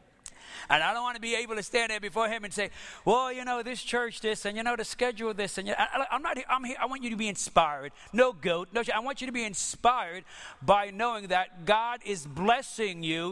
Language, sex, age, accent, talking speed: English, male, 40-59, American, 255 wpm